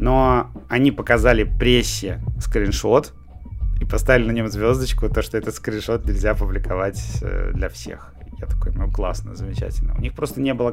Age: 30-49